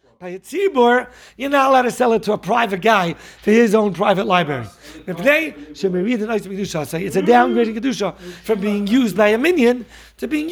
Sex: male